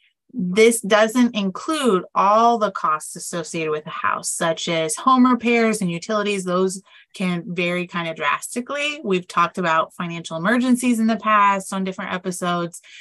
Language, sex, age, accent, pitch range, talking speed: English, female, 30-49, American, 175-215 Hz, 150 wpm